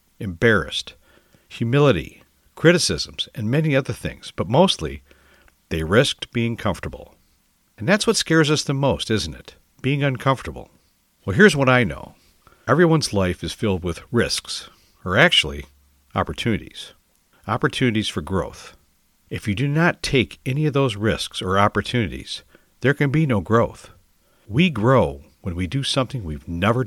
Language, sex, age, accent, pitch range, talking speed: English, male, 60-79, American, 90-125 Hz, 145 wpm